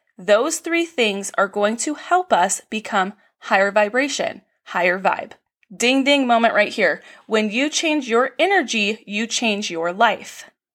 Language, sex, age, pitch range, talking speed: English, female, 20-39, 210-275 Hz, 150 wpm